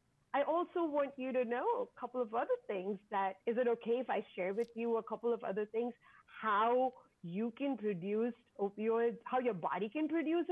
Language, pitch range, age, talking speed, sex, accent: English, 215-280 Hz, 40-59, 200 wpm, female, Indian